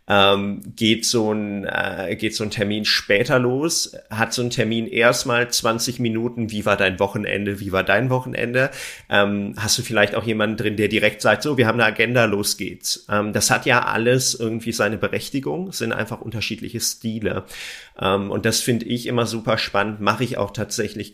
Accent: German